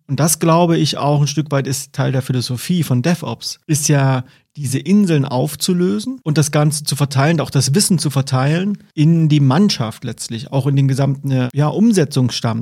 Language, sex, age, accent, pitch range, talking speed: German, male, 30-49, German, 130-155 Hz, 180 wpm